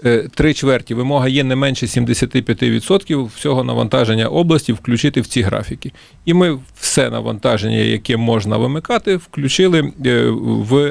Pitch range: 115-150 Hz